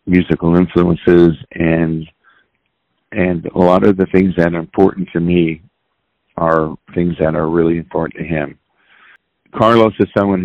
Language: English